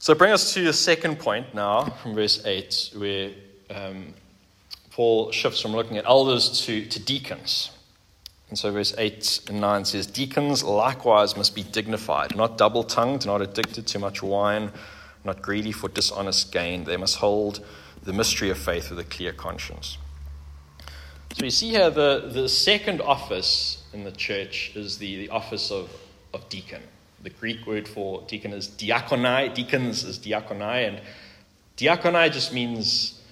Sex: male